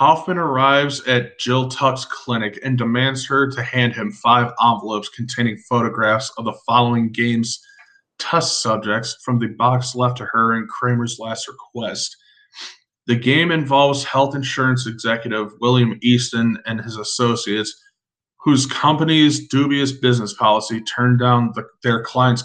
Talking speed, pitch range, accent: 140 wpm, 115-130 Hz, American